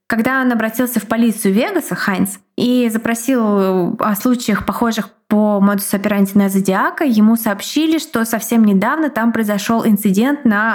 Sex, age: female, 20-39